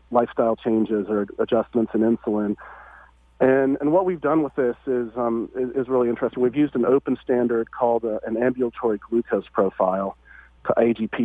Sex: male